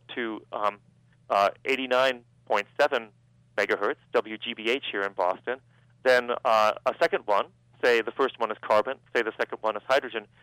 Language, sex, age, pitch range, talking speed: English, male, 40-59, 105-130 Hz, 145 wpm